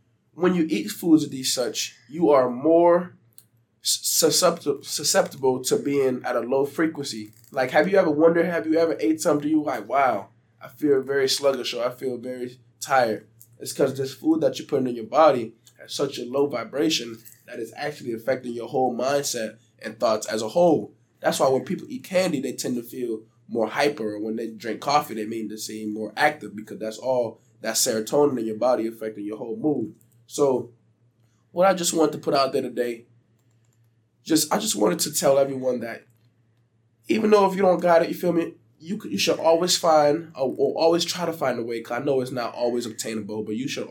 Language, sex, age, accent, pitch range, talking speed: English, male, 20-39, American, 115-155 Hz, 210 wpm